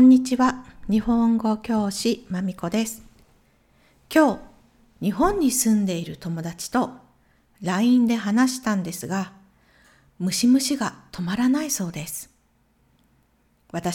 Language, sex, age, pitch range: Japanese, female, 50-69, 175-250 Hz